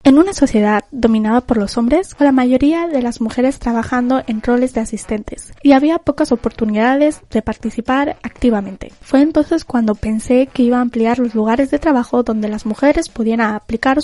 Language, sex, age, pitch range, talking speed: Spanish, female, 10-29, 230-280 Hz, 175 wpm